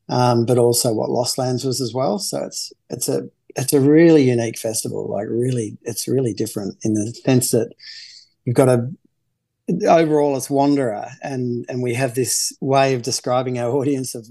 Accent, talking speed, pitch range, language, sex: Australian, 185 wpm, 115-135 Hz, English, male